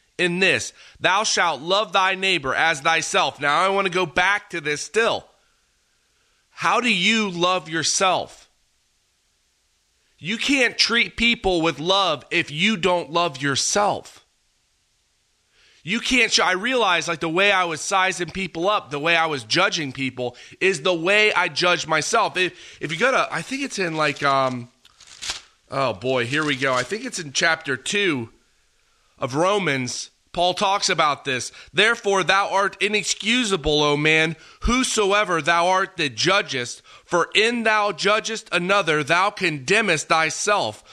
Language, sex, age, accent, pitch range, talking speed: English, male, 30-49, American, 155-200 Hz, 155 wpm